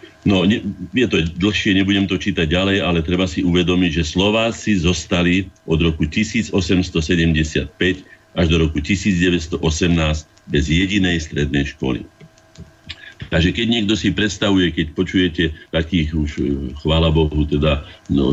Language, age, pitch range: Slovak, 50-69, 80-95 Hz